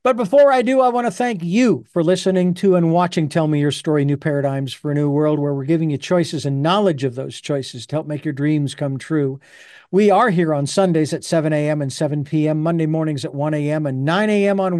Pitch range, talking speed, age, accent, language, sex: 155-205 Hz, 245 wpm, 50-69, American, English, male